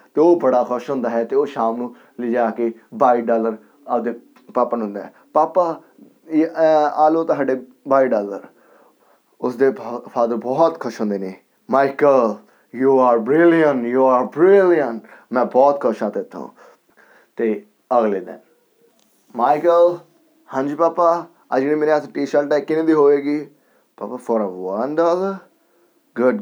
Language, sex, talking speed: Punjabi, male, 140 wpm